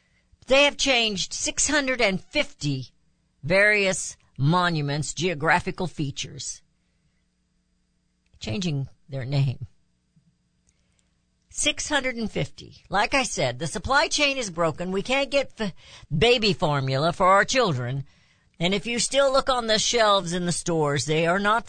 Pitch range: 140-220 Hz